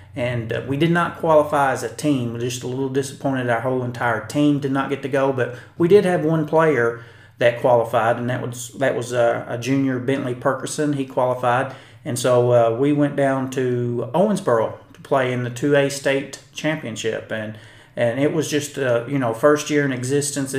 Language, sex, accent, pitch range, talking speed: English, male, American, 120-145 Hz, 205 wpm